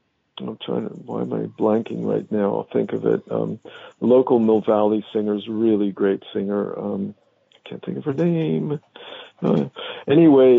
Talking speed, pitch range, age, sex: 175 wpm, 110-130 Hz, 50-69, male